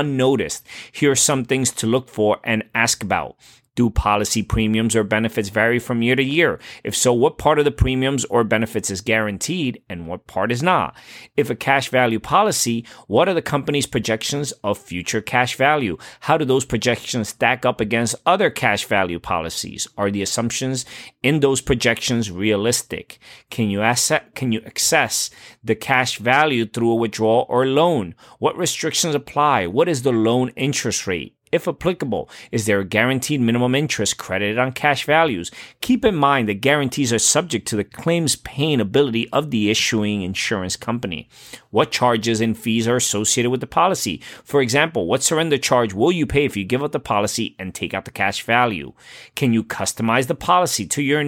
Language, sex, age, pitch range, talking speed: English, male, 30-49, 110-140 Hz, 180 wpm